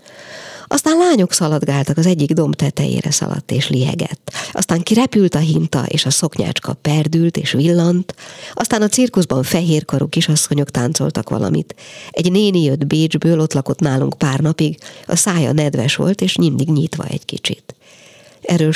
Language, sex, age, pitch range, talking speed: Hungarian, female, 50-69, 145-175 Hz, 145 wpm